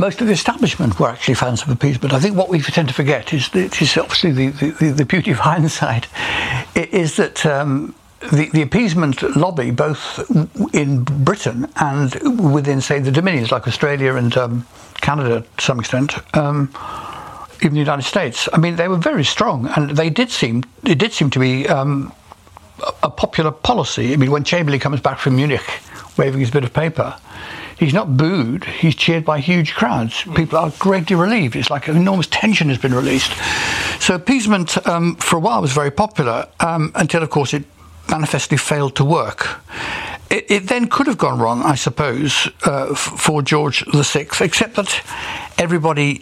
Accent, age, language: British, 60-79, English